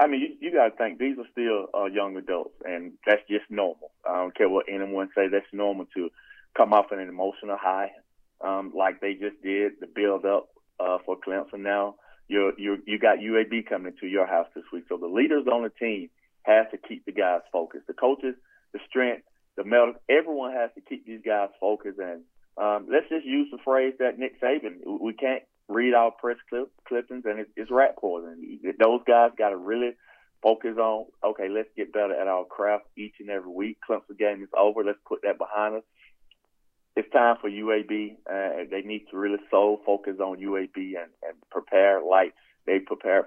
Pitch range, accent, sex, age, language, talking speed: 100-115 Hz, American, male, 30-49, English, 200 wpm